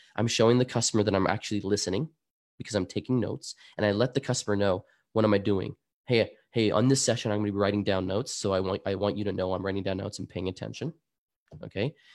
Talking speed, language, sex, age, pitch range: 245 wpm, English, male, 20-39, 95-115 Hz